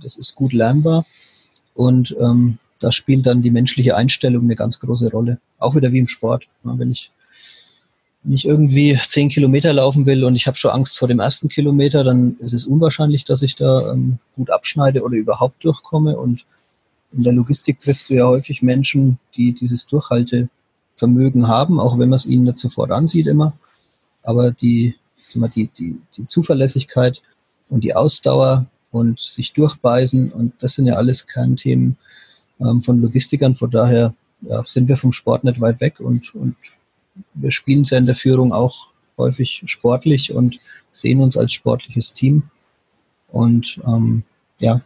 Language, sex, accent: German, male, German